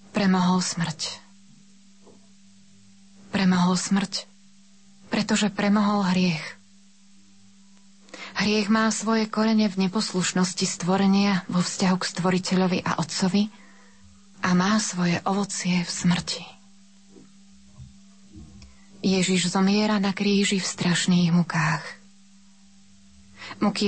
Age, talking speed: 20-39, 85 wpm